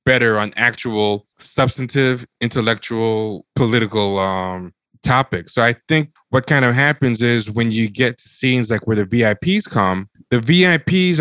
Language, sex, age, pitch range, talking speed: English, male, 20-39, 100-125 Hz, 150 wpm